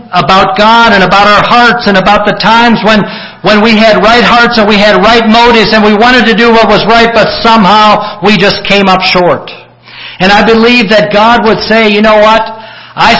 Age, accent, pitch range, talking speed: 60-79, American, 160-220 Hz, 215 wpm